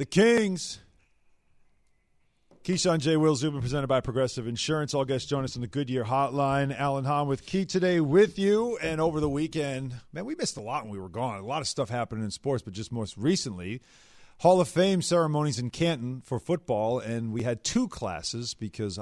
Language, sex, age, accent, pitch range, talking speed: English, male, 40-59, American, 115-160 Hz, 200 wpm